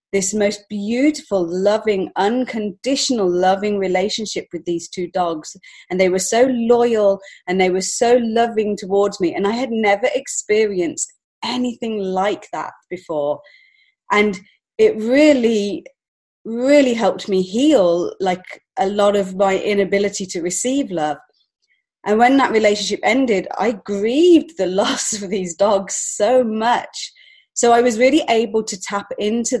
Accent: British